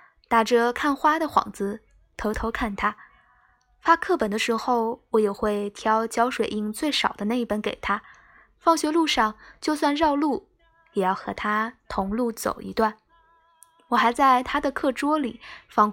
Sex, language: female, Chinese